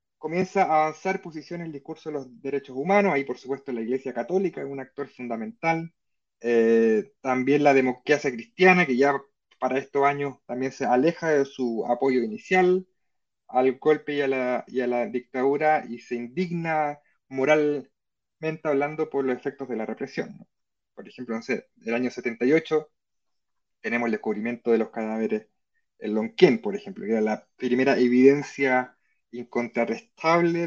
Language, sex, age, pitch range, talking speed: Spanish, male, 30-49, 125-160 Hz, 160 wpm